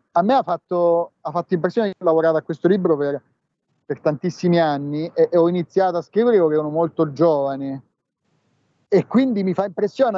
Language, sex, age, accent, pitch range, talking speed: Italian, male, 40-59, native, 160-195 Hz, 190 wpm